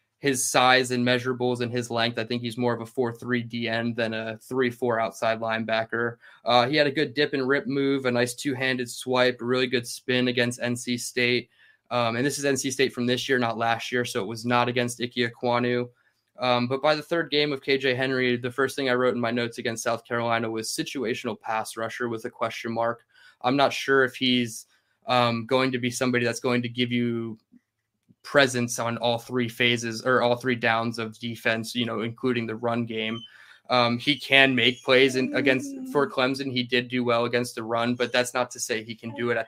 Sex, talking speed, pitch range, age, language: male, 220 wpm, 115-130 Hz, 20-39, English